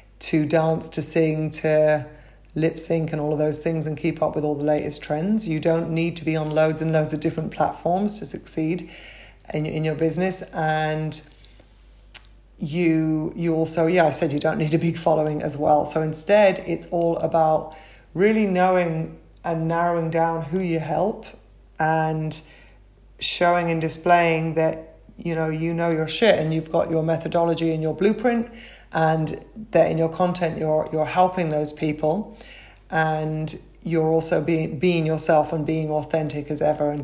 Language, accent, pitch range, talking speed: English, British, 155-165 Hz, 175 wpm